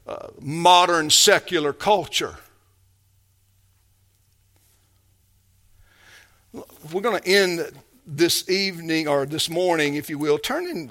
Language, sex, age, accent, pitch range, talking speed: English, male, 50-69, American, 155-225 Hz, 90 wpm